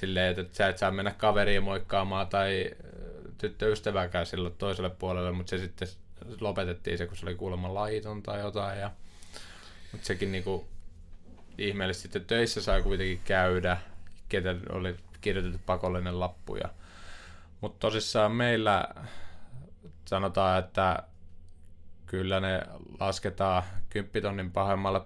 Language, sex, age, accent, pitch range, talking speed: Finnish, male, 20-39, native, 85-95 Hz, 120 wpm